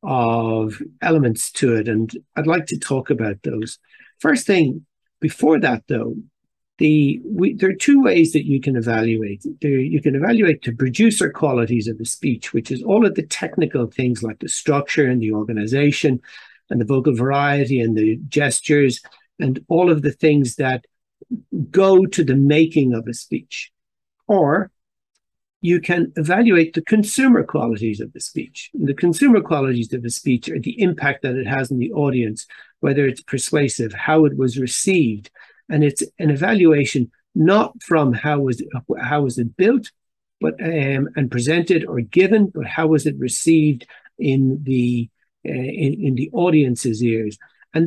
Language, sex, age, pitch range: English, male, 60-79, 120-160 Hz